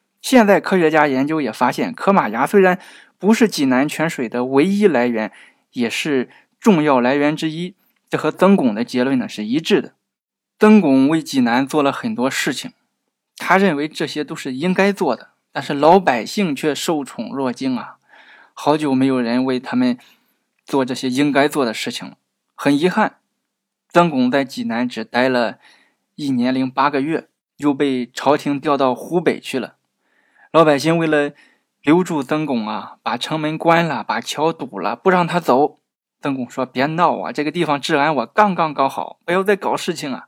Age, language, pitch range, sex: 20-39, Chinese, 135-185 Hz, male